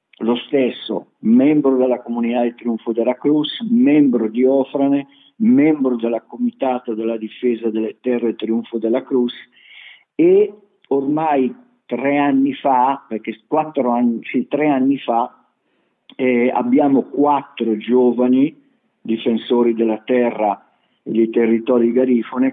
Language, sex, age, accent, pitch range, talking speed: Italian, male, 50-69, native, 115-140 Hz, 115 wpm